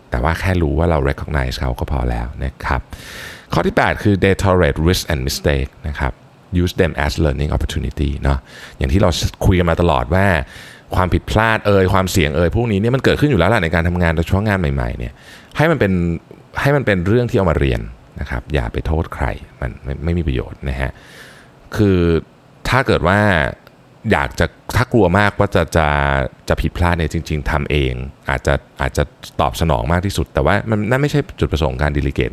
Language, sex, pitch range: Thai, male, 75-100 Hz